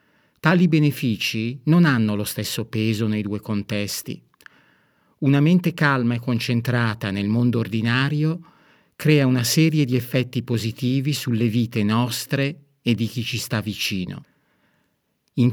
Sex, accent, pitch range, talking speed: male, native, 110-145 Hz, 130 wpm